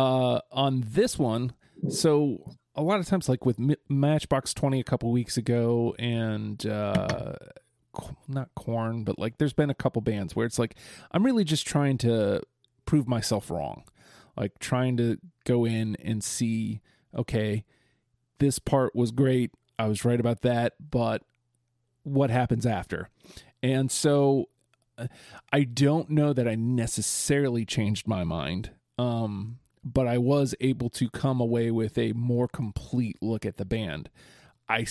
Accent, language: American, English